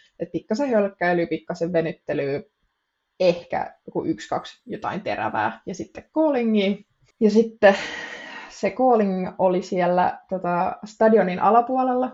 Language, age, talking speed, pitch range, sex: Finnish, 20-39, 110 wpm, 175-220 Hz, female